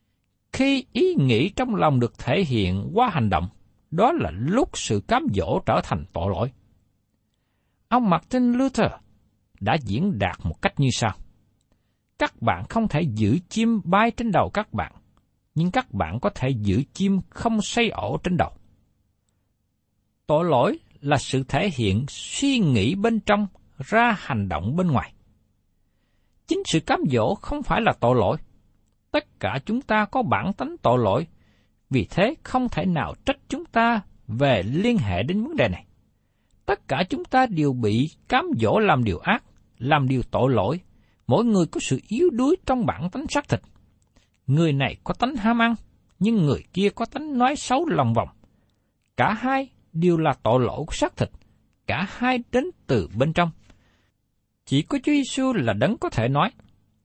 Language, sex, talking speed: Vietnamese, male, 175 wpm